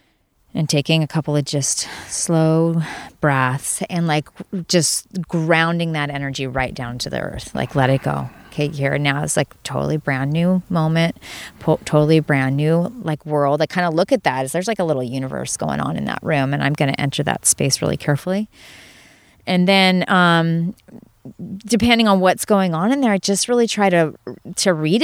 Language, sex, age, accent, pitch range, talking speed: English, female, 30-49, American, 145-185 Hz, 195 wpm